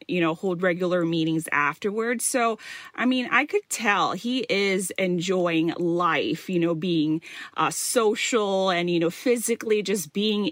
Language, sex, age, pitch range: Thai, female, 30-49, 175-245 Hz